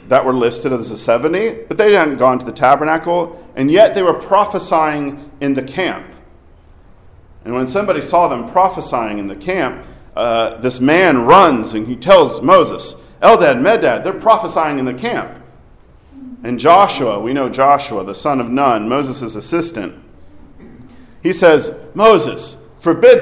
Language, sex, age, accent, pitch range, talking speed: English, male, 40-59, American, 115-170 Hz, 155 wpm